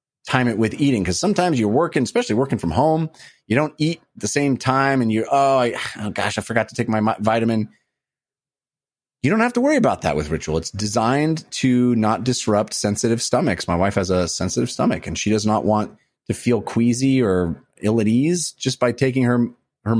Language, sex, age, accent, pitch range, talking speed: English, male, 30-49, American, 105-150 Hz, 205 wpm